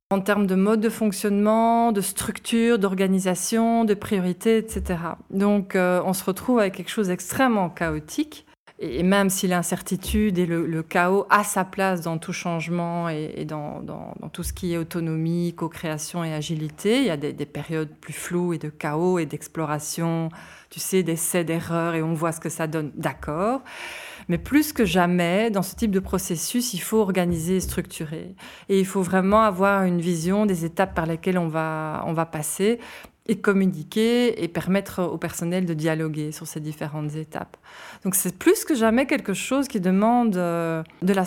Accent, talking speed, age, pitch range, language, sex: French, 185 wpm, 20-39, 165-200 Hz, French, female